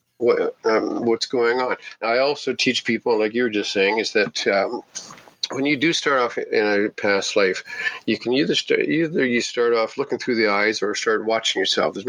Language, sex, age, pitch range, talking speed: English, male, 50-69, 110-150 Hz, 210 wpm